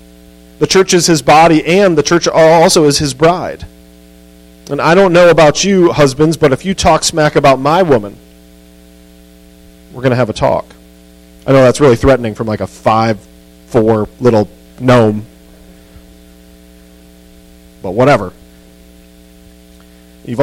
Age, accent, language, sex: 40-59, American, English, male